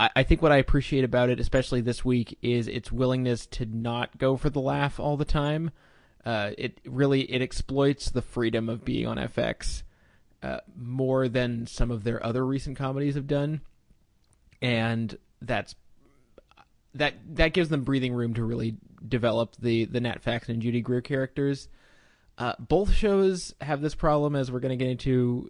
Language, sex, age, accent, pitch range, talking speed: English, male, 20-39, American, 120-140 Hz, 175 wpm